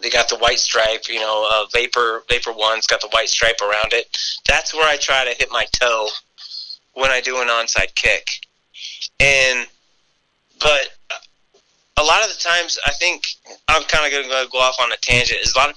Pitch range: 120-155 Hz